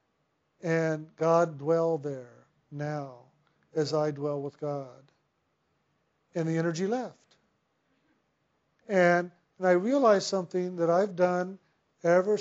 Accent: American